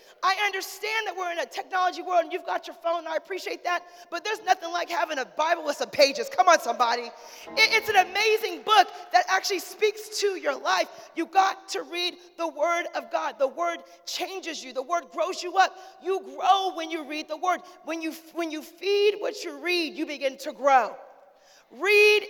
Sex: female